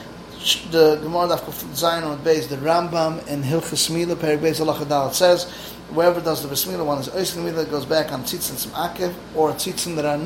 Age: 30-49